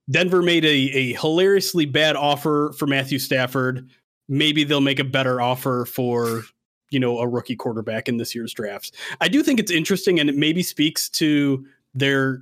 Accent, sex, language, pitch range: American, male, English, 130-175 Hz